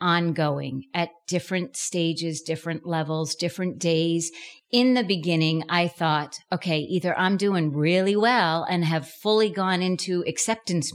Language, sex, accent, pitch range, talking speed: English, female, American, 155-185 Hz, 135 wpm